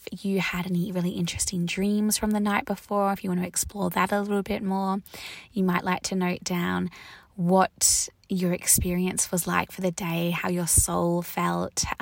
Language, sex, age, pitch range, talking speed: English, female, 20-39, 175-205 Hz, 190 wpm